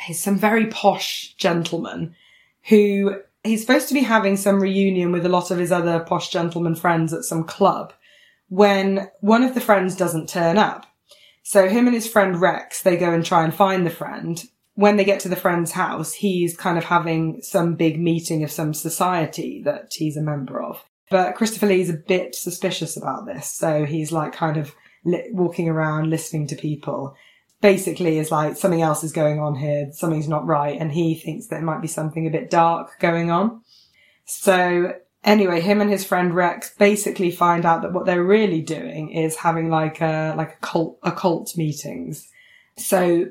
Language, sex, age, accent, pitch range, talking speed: English, female, 20-39, British, 160-195 Hz, 190 wpm